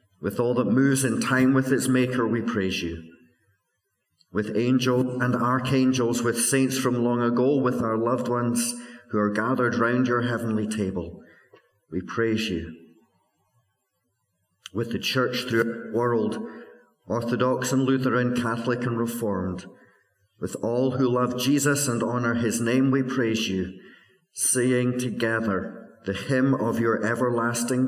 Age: 50-69